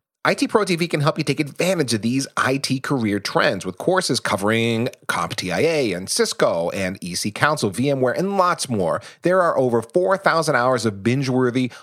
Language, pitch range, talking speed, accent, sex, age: English, 115-160 Hz, 165 wpm, American, male, 40-59